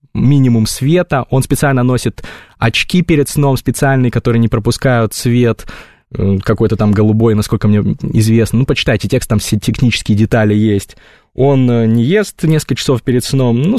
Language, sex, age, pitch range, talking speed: Russian, male, 20-39, 105-130 Hz, 150 wpm